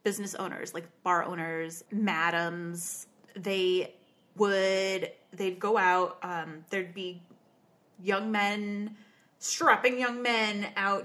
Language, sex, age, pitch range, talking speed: English, female, 20-39, 195-230 Hz, 110 wpm